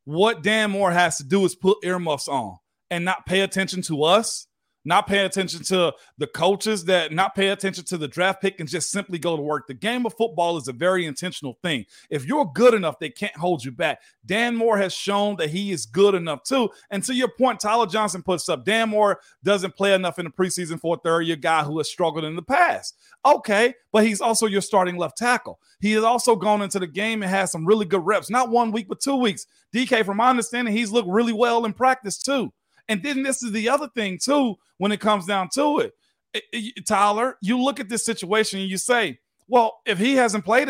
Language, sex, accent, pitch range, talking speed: English, male, American, 180-230 Hz, 230 wpm